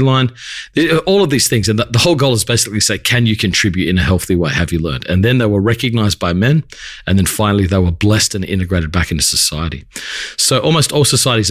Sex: male